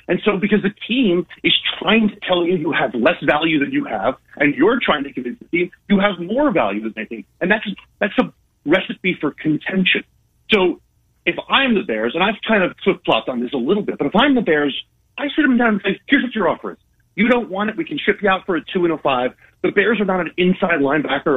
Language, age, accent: English, 40-59, American